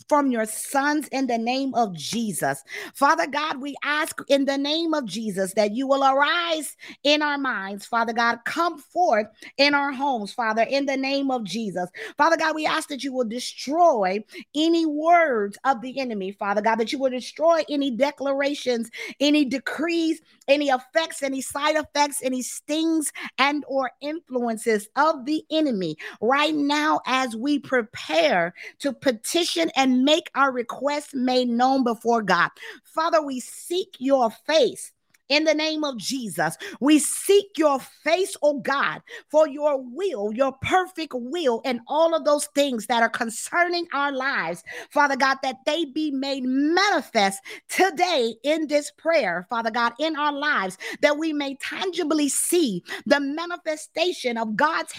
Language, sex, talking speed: English, female, 160 wpm